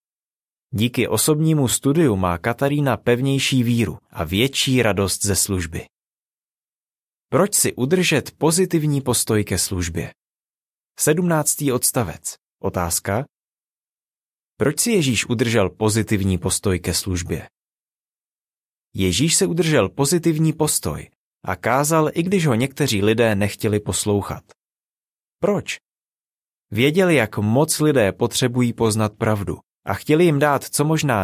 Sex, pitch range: male, 100-150 Hz